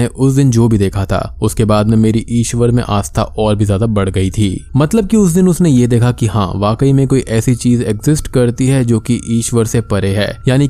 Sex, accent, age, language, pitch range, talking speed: male, native, 20-39, Hindi, 110-140 Hz, 235 wpm